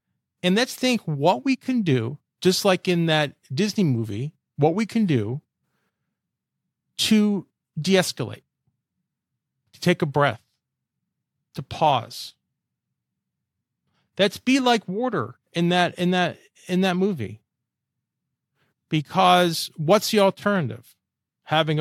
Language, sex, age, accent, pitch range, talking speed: English, male, 40-59, American, 135-190 Hz, 115 wpm